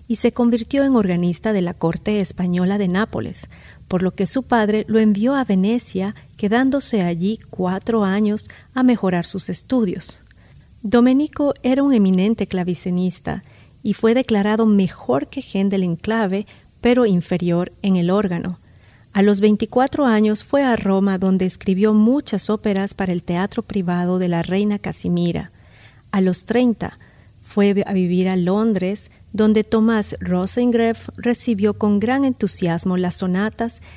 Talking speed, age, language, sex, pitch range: 145 wpm, 40-59, Spanish, female, 185-225 Hz